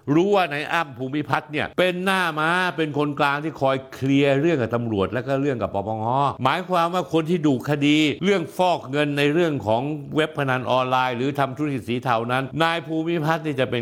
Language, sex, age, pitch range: Thai, male, 60-79, 115-160 Hz